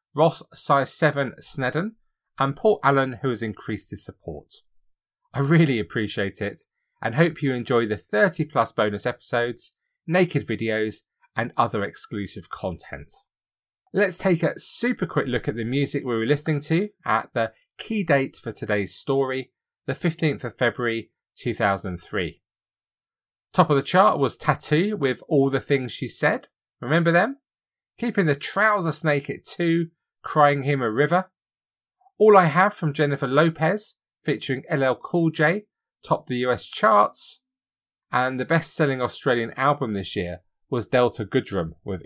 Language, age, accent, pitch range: English, 30-49, British, 110-160 Hz